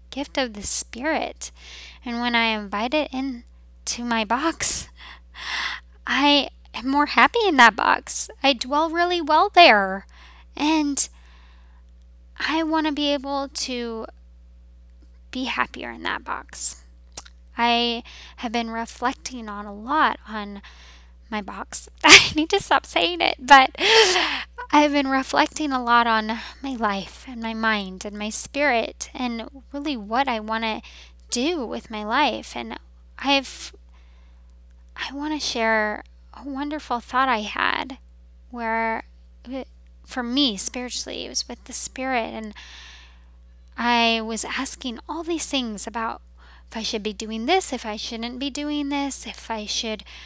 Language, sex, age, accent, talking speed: English, female, 10-29, American, 150 wpm